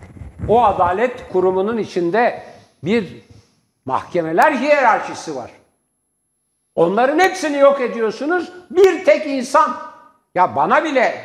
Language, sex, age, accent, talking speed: Turkish, male, 60-79, native, 95 wpm